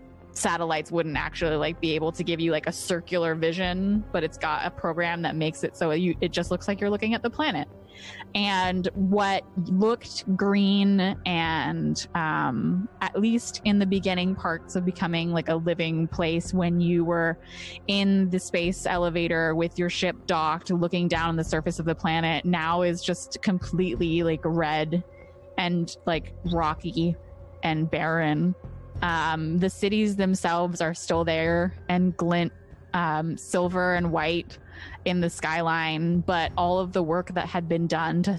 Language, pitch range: English, 165-185 Hz